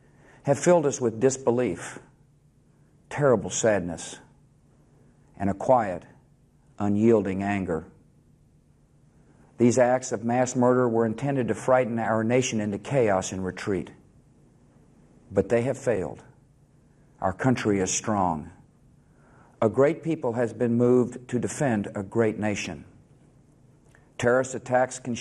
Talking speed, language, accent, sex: 115 wpm, English, American, male